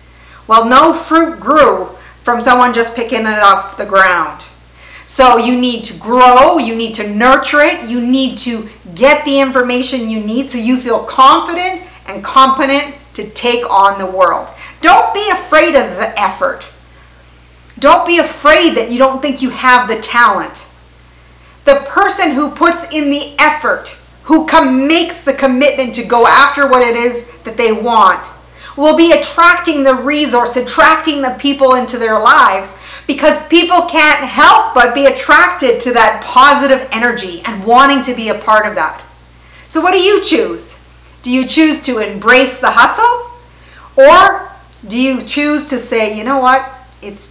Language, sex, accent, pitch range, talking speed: English, female, American, 220-290 Hz, 165 wpm